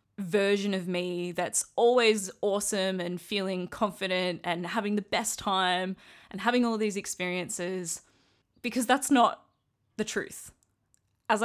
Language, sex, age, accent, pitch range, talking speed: English, female, 20-39, Australian, 180-215 Hz, 135 wpm